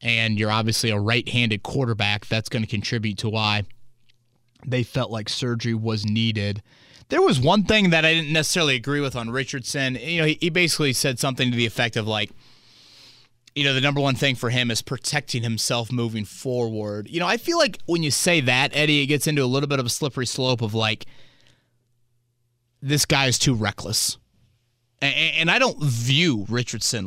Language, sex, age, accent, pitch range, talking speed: English, male, 30-49, American, 120-150 Hz, 195 wpm